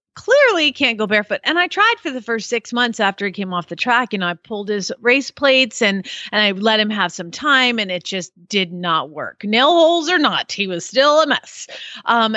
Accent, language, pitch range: American, English, 180-260 Hz